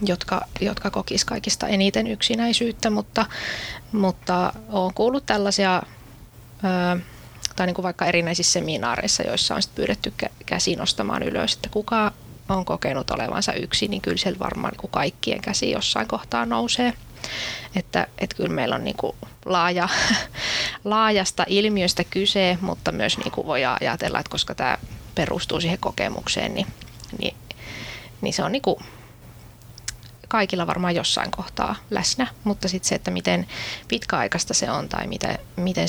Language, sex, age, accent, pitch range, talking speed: Finnish, female, 20-39, native, 120-195 Hz, 140 wpm